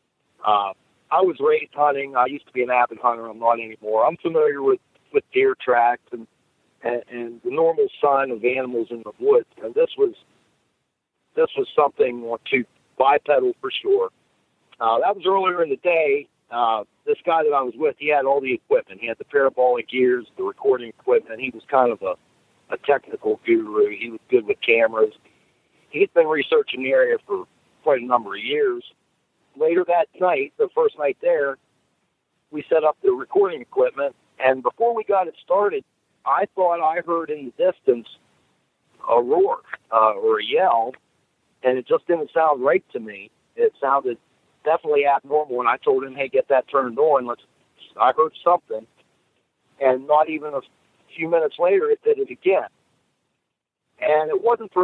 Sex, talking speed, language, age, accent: male, 180 wpm, English, 50-69, American